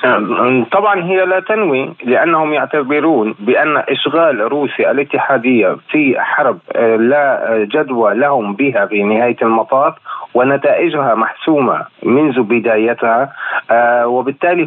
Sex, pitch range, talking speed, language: male, 120-155 Hz, 100 wpm, Arabic